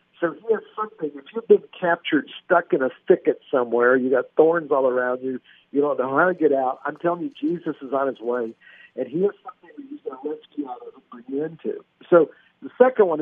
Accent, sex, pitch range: American, male, 135-210 Hz